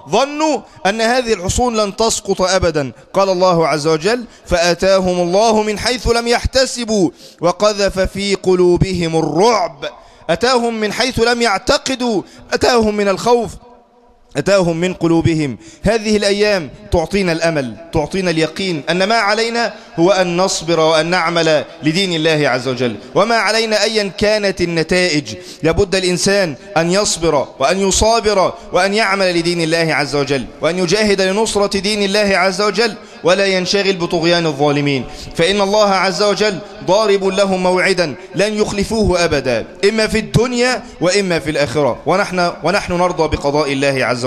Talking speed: 135 wpm